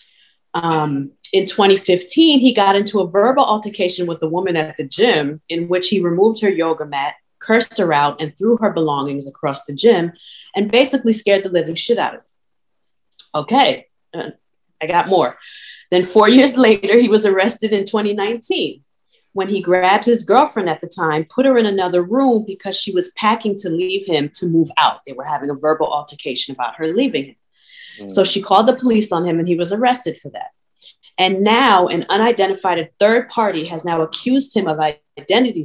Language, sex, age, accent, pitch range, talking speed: English, female, 30-49, American, 170-230 Hz, 190 wpm